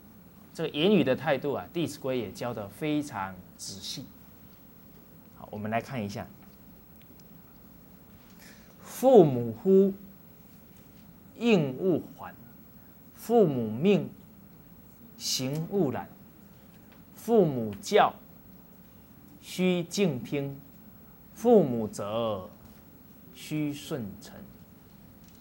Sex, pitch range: male, 115-175 Hz